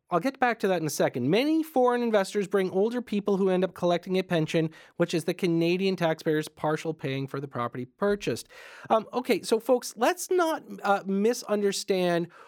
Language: English